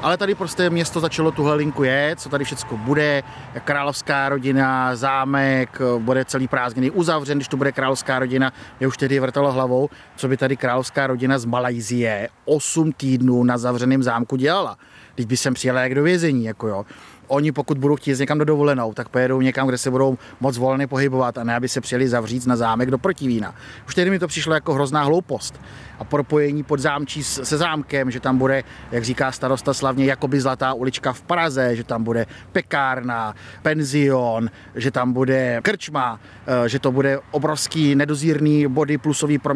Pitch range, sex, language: 130-150 Hz, male, Czech